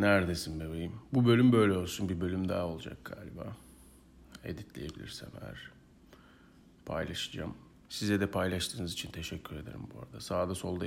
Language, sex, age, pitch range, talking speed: Turkish, male, 40-59, 90-140 Hz, 135 wpm